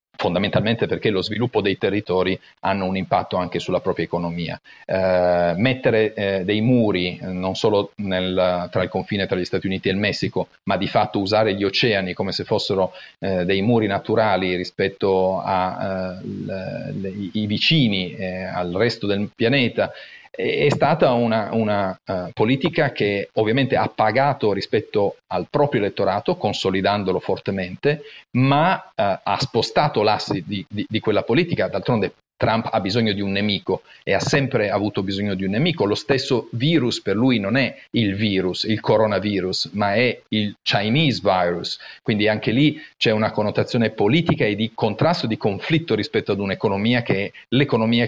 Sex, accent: male, native